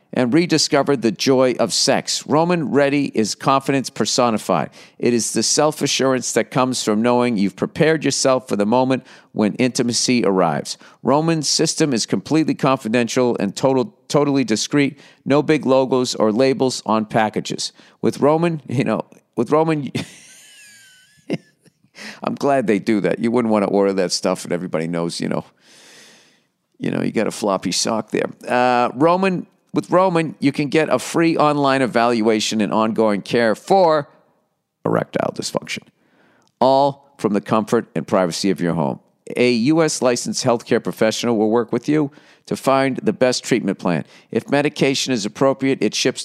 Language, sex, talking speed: English, male, 155 wpm